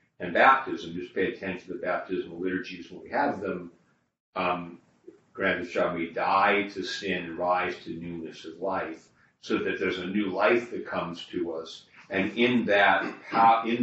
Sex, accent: male, American